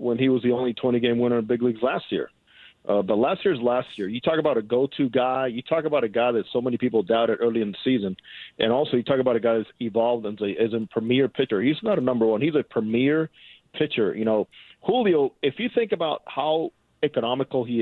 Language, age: English, 40-59